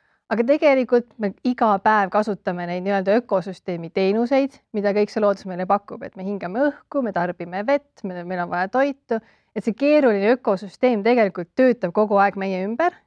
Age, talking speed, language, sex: 30-49, 170 wpm, English, female